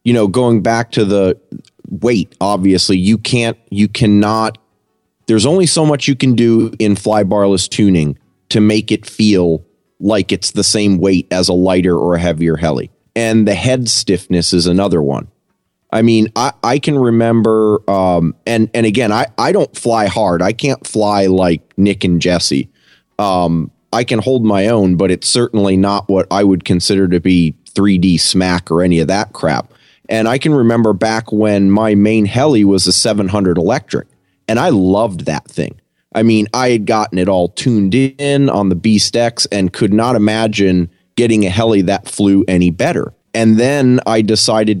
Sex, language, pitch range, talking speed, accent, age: male, English, 95-115 Hz, 185 wpm, American, 30-49